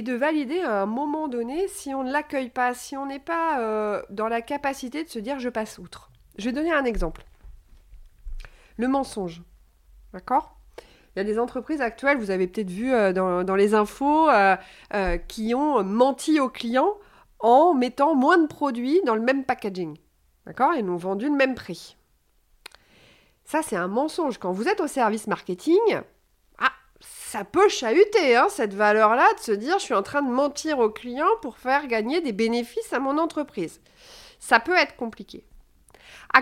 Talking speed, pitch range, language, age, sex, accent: 185 wpm, 200-310 Hz, French, 40-59, female, French